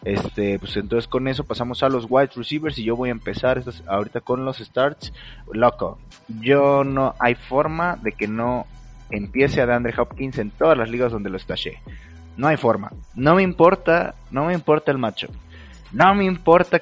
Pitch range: 110-145 Hz